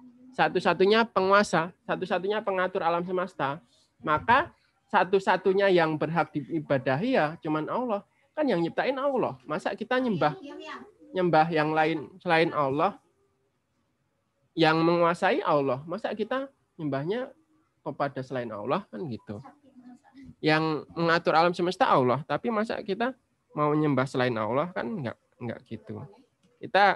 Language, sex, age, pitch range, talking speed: Indonesian, male, 20-39, 135-185 Hz, 120 wpm